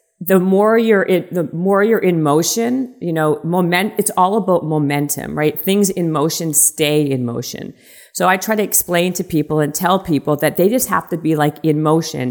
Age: 40-59